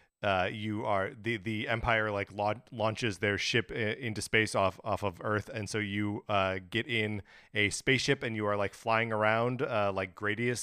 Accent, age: American, 30-49